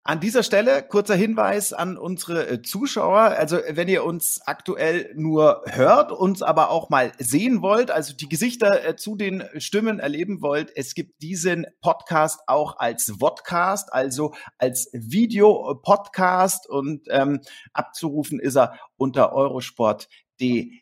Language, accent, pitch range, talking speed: German, German, 130-190 Hz, 135 wpm